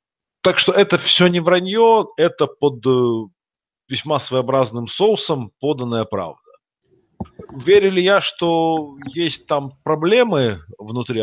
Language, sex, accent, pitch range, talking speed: Russian, male, native, 110-165 Hz, 110 wpm